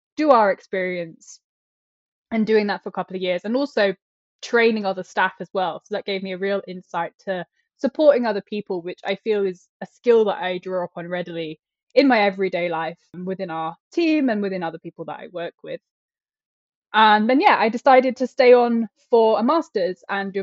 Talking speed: 205 wpm